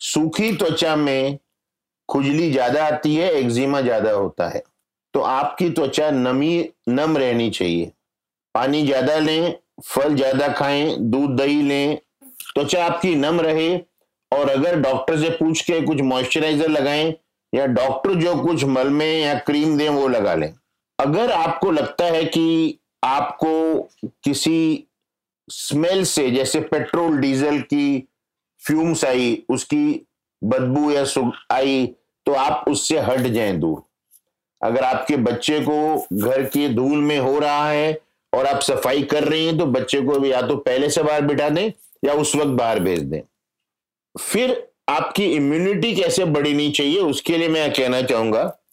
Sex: male